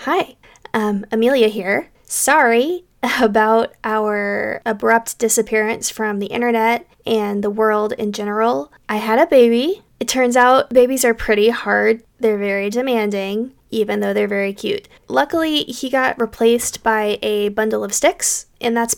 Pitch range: 210-245 Hz